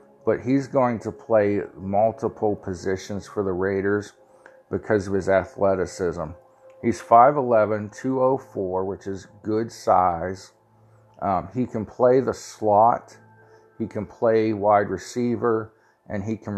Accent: American